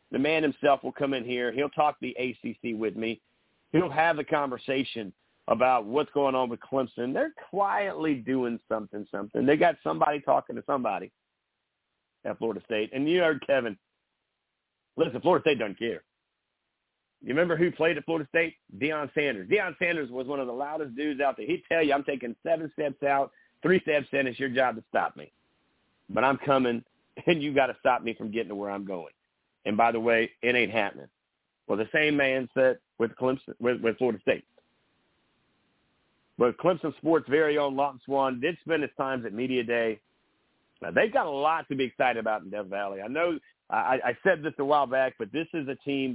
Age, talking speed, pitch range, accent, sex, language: 50-69, 205 wpm, 115-150 Hz, American, male, English